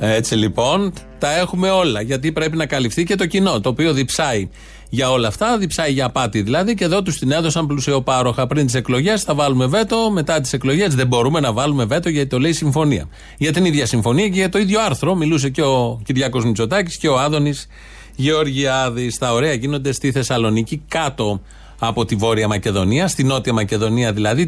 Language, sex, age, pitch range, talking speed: Greek, male, 30-49, 125-165 Hz, 195 wpm